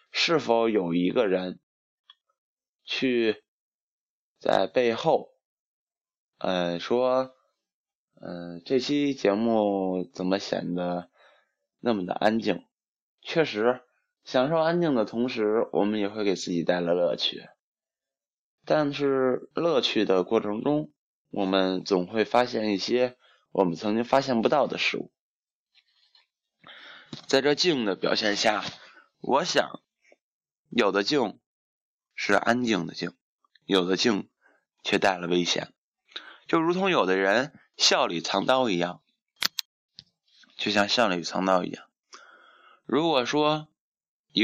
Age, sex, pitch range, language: 20-39, male, 95-125 Hz, Chinese